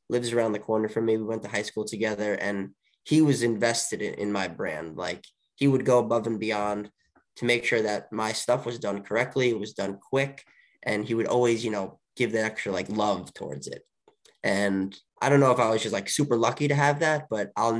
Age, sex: 20-39, male